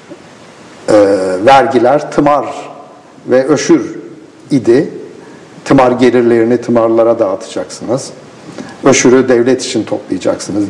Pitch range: 120-155 Hz